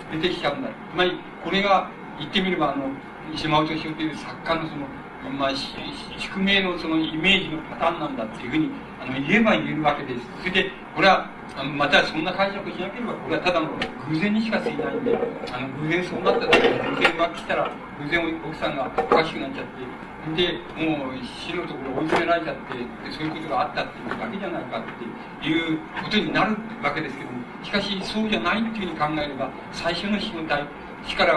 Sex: male